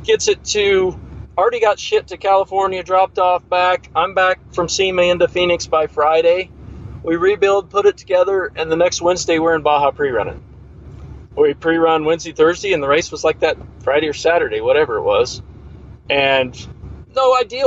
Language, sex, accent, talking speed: English, male, American, 175 wpm